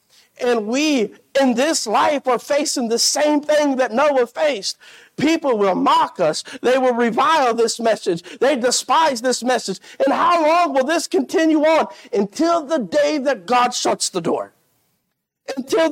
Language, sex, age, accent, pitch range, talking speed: English, male, 50-69, American, 235-285 Hz, 160 wpm